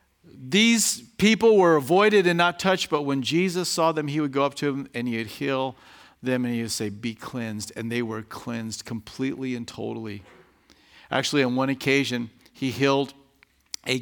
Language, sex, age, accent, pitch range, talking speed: English, male, 50-69, American, 115-155 Hz, 180 wpm